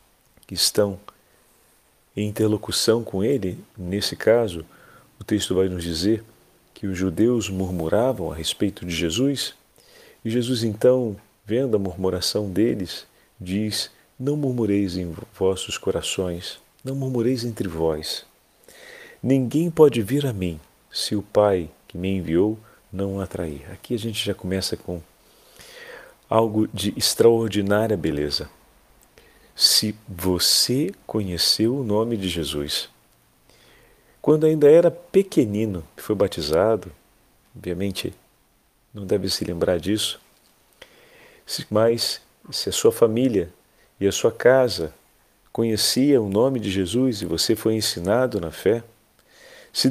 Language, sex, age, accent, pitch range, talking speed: Portuguese, male, 40-59, Brazilian, 95-125 Hz, 125 wpm